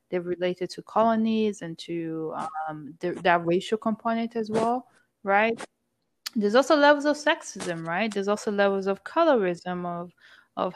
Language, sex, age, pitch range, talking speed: English, female, 20-39, 175-210 Hz, 150 wpm